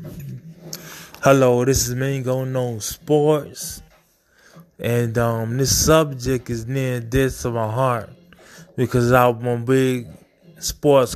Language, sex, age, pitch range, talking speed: English, male, 20-39, 125-160 Hz, 120 wpm